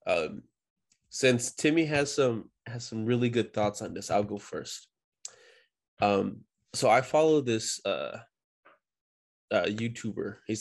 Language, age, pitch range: English, 20-39, 105-125 Hz